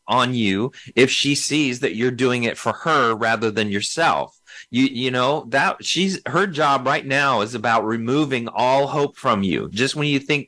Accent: American